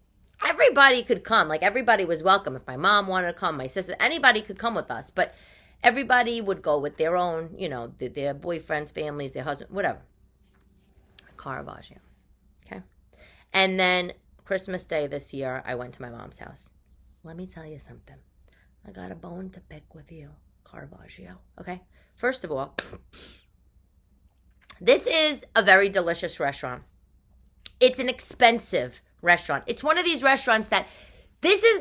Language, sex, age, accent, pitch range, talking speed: English, female, 30-49, American, 150-210 Hz, 160 wpm